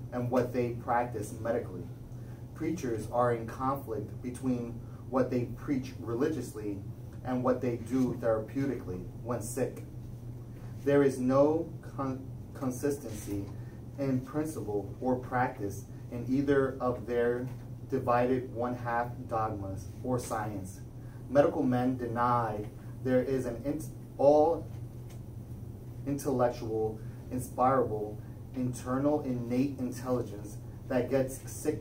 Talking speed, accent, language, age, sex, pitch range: 100 wpm, American, English, 30-49, male, 115-130 Hz